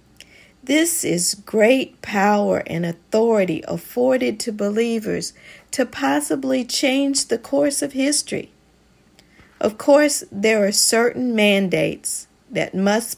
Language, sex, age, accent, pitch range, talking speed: English, female, 40-59, American, 175-235 Hz, 110 wpm